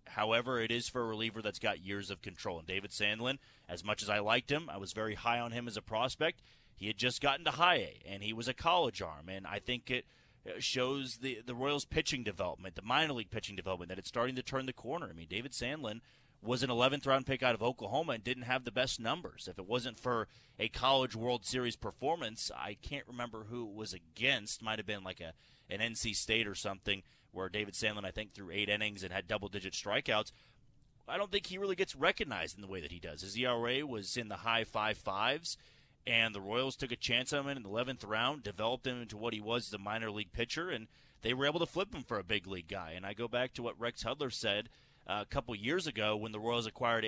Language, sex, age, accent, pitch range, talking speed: English, male, 30-49, American, 105-125 Hz, 245 wpm